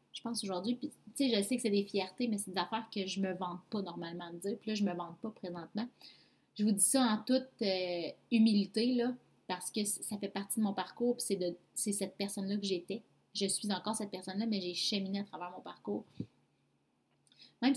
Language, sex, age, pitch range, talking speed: French, female, 30-49, 190-235 Hz, 235 wpm